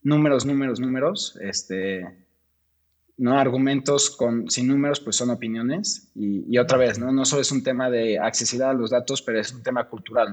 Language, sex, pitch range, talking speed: Spanish, male, 110-135 Hz, 185 wpm